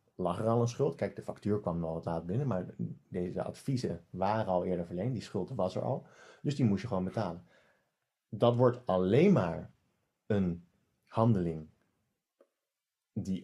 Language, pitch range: English, 95-125 Hz